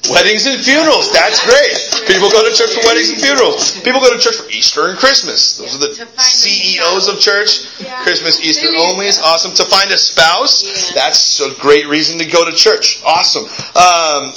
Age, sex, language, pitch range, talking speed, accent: 30-49, male, English, 165-275 Hz, 190 wpm, American